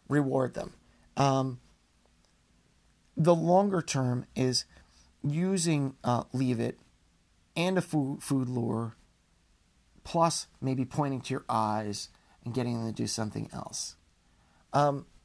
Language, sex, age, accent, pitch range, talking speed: English, male, 30-49, American, 105-135 Hz, 120 wpm